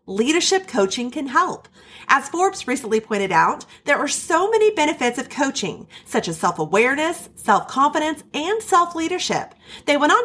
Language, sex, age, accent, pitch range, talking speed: English, female, 30-49, American, 210-330 Hz, 145 wpm